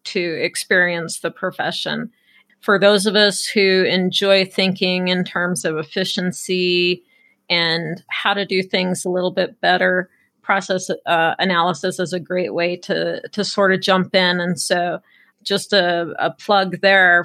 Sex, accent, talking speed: female, American, 155 wpm